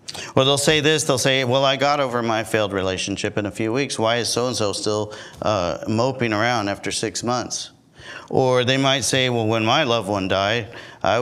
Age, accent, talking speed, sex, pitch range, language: 50-69, American, 205 wpm, male, 100-125 Hz, English